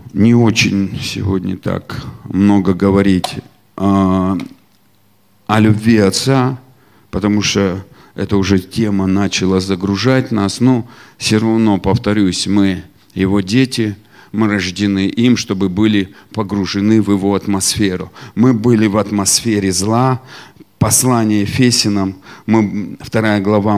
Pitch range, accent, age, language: 100-135 Hz, native, 40-59, Russian